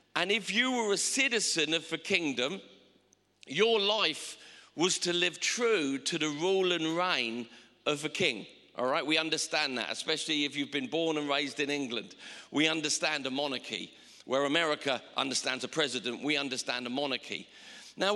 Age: 50-69